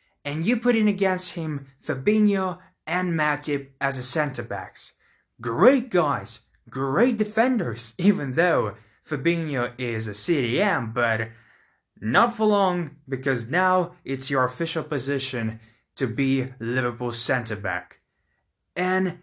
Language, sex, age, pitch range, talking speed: English, male, 20-39, 130-205 Hz, 115 wpm